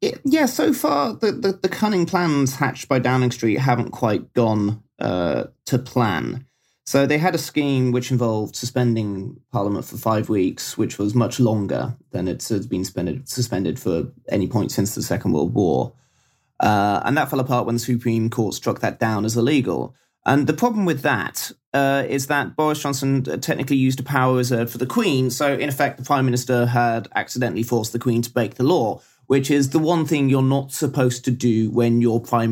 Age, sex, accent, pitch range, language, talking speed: 30-49, male, British, 120-140 Hz, English, 195 wpm